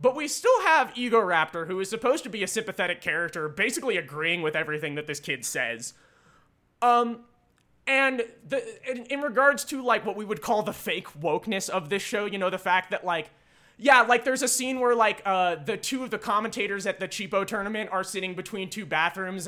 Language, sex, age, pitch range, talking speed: English, male, 20-39, 170-235 Hz, 210 wpm